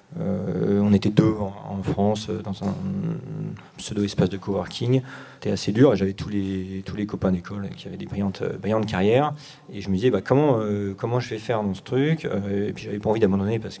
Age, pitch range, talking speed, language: 40-59, 100-130 Hz, 215 wpm, French